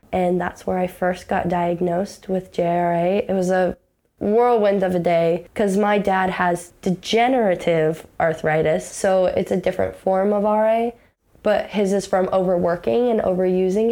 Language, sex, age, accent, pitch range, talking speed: English, female, 10-29, American, 180-210 Hz, 155 wpm